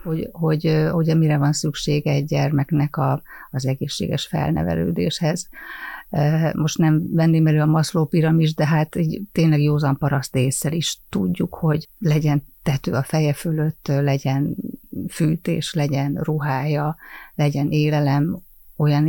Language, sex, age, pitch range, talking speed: Hungarian, female, 30-49, 145-160 Hz, 130 wpm